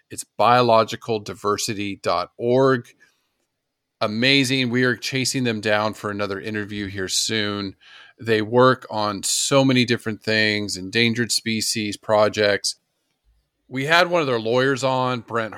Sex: male